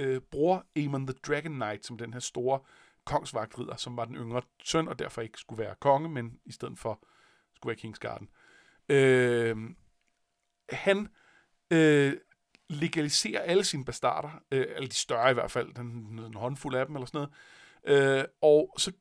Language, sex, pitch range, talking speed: Danish, male, 125-165 Hz, 170 wpm